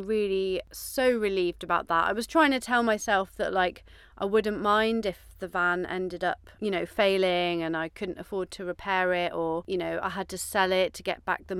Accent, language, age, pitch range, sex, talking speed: British, English, 30-49, 175-225 Hz, female, 225 wpm